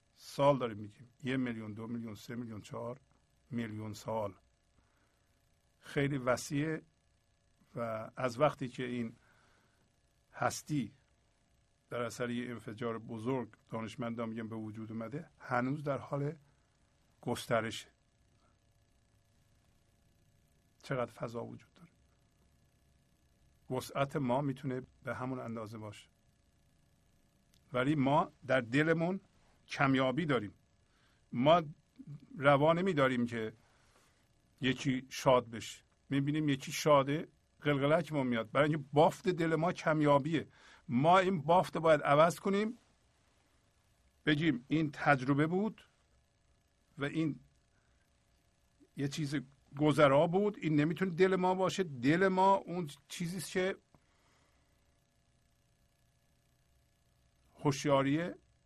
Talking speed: 100 wpm